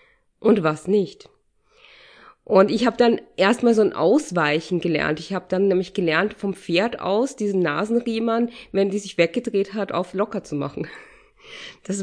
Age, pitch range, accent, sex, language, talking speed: 20-39, 175-215 Hz, German, female, German, 160 wpm